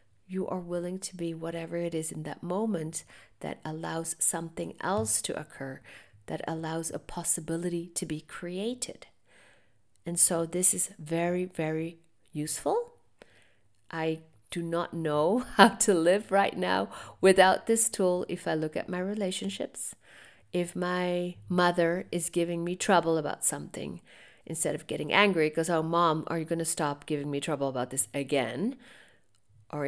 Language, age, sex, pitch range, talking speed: English, 50-69, female, 145-175 Hz, 155 wpm